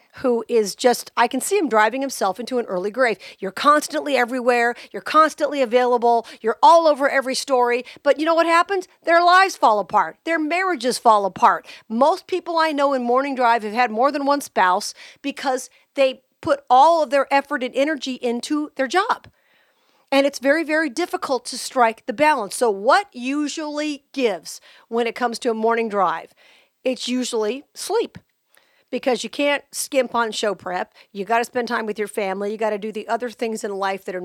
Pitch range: 205-285 Hz